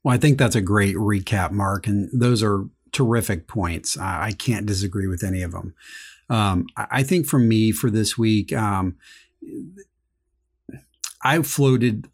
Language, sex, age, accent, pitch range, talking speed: English, male, 30-49, American, 100-125 Hz, 165 wpm